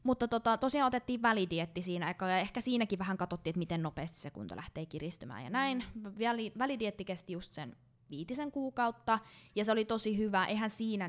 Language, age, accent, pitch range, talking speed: Finnish, 20-39, native, 170-210 Hz, 185 wpm